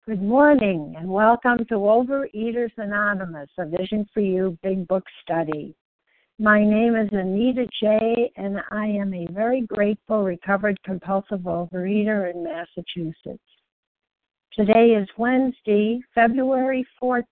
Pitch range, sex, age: 195-240 Hz, female, 60-79